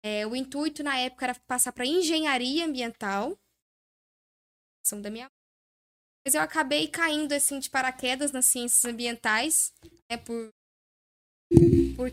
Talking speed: 130 wpm